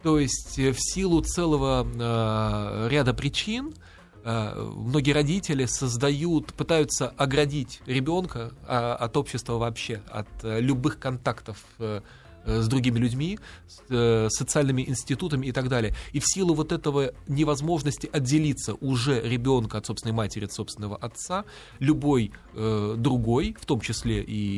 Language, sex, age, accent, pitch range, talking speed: Russian, male, 20-39, native, 115-145 Hz, 135 wpm